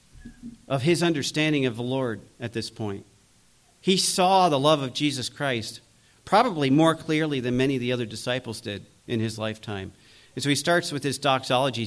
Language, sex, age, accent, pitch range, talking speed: English, male, 50-69, American, 115-150 Hz, 180 wpm